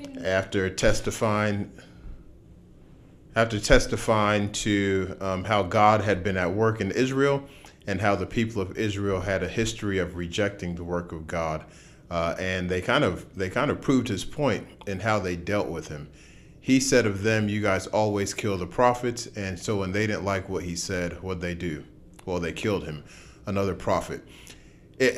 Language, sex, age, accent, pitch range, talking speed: English, male, 30-49, American, 90-110 Hz, 180 wpm